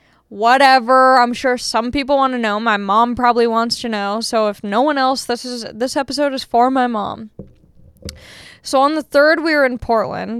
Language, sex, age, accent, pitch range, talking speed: English, female, 10-29, American, 220-265 Hz, 200 wpm